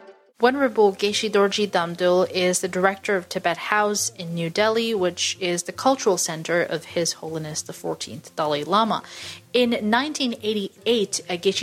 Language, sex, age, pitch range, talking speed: English, female, 30-49, 180-225 Hz, 140 wpm